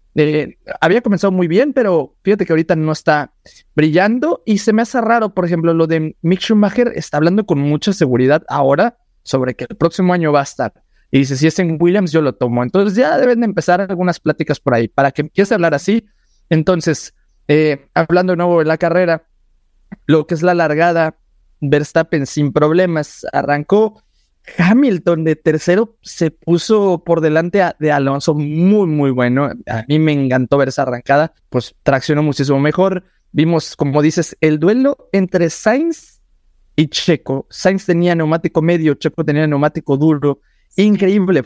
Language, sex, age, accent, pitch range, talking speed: Spanish, male, 30-49, Mexican, 150-185 Hz, 170 wpm